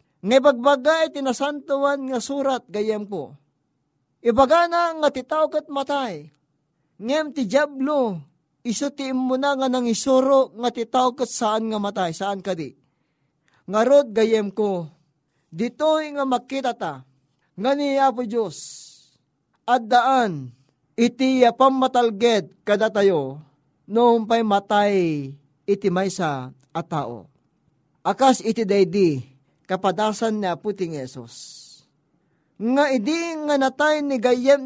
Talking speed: 105 wpm